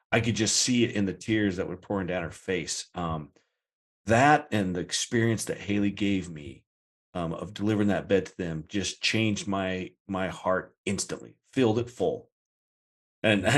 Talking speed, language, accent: 175 wpm, English, American